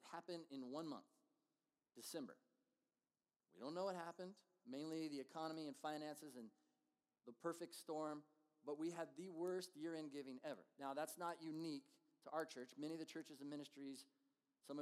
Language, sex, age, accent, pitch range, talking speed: English, male, 40-59, American, 140-180 Hz, 165 wpm